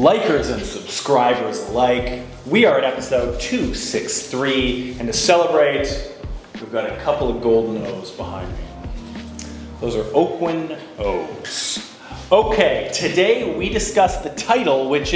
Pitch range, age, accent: 120-160 Hz, 30-49, American